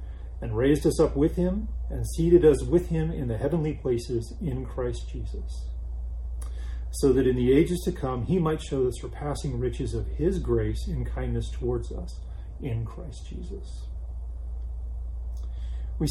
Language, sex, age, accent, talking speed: English, male, 40-59, American, 155 wpm